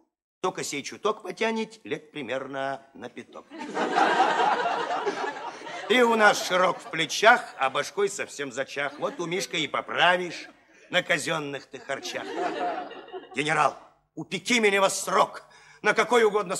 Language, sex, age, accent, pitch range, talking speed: Russian, male, 50-69, native, 150-230 Hz, 125 wpm